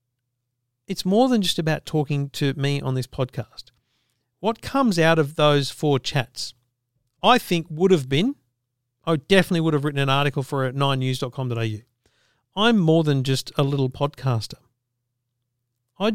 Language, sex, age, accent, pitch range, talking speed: English, male, 50-69, Australian, 125-170 Hz, 155 wpm